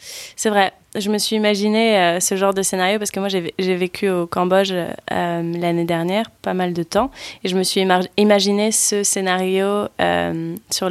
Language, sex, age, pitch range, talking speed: French, female, 20-39, 175-215 Hz, 205 wpm